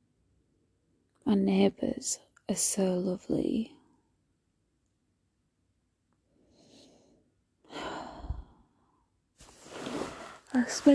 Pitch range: 155-200 Hz